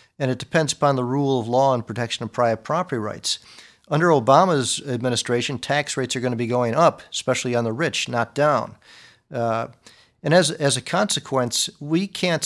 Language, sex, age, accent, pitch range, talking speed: English, male, 50-69, American, 120-140 Hz, 190 wpm